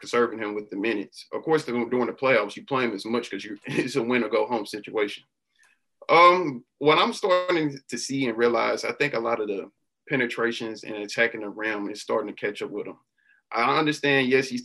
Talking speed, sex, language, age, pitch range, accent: 215 wpm, male, English, 20-39, 115-160 Hz, American